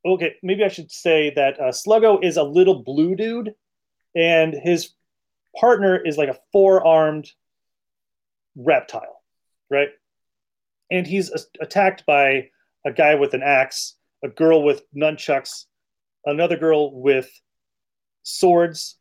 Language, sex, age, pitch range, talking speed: English, male, 30-49, 135-180 Hz, 125 wpm